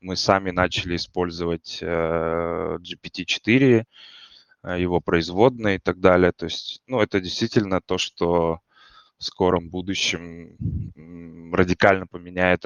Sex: male